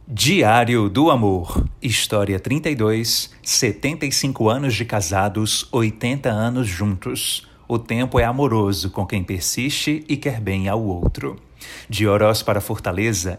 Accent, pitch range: Brazilian, 100-125 Hz